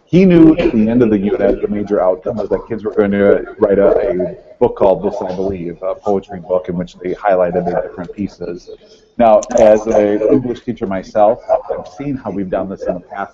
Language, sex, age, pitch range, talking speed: English, male, 30-49, 100-125 Hz, 230 wpm